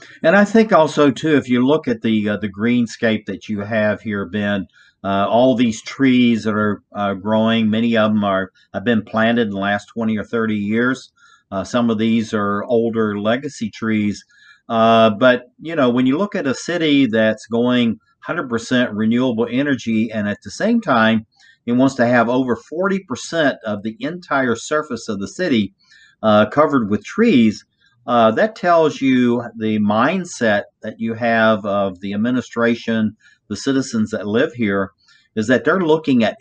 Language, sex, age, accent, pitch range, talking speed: English, male, 50-69, American, 110-135 Hz, 175 wpm